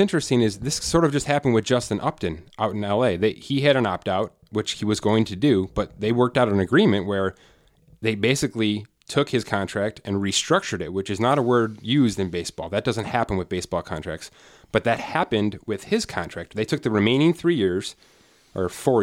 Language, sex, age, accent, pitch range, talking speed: English, male, 30-49, American, 100-130 Hz, 210 wpm